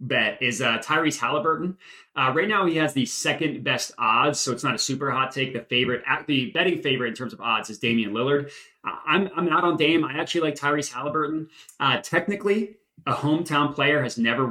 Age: 20-39